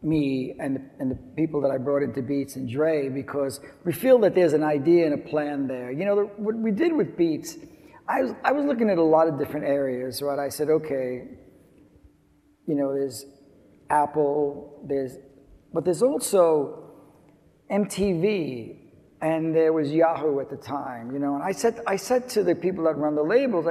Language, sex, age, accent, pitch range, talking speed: English, male, 50-69, American, 150-215 Hz, 190 wpm